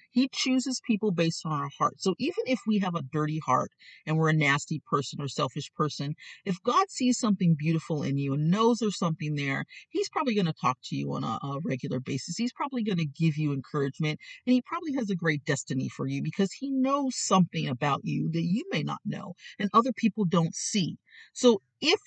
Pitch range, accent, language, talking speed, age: 160-245 Hz, American, English, 220 wpm, 40-59